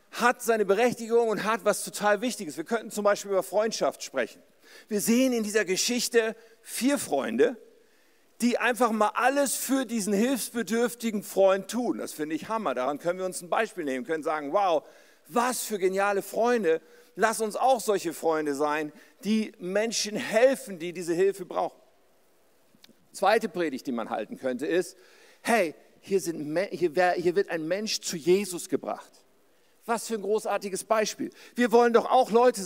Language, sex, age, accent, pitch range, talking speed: German, male, 50-69, German, 195-240 Hz, 165 wpm